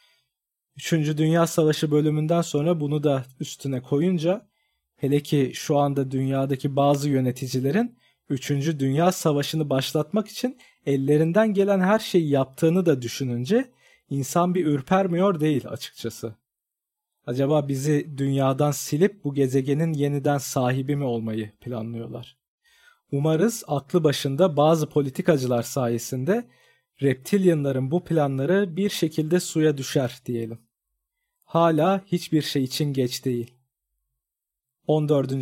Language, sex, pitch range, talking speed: Turkish, male, 130-175 Hz, 110 wpm